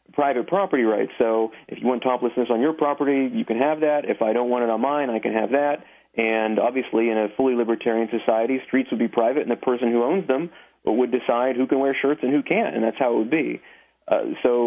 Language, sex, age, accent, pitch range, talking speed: English, male, 40-59, American, 115-130 Hz, 245 wpm